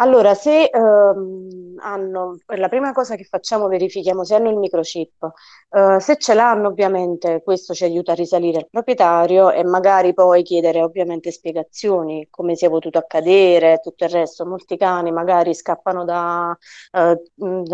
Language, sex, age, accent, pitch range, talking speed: Italian, female, 20-39, native, 170-200 Hz, 155 wpm